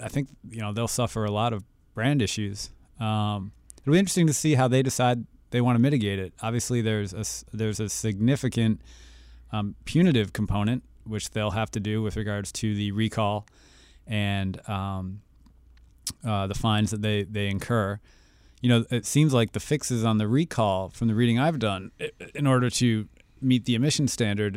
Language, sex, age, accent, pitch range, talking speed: English, male, 30-49, American, 100-120 Hz, 185 wpm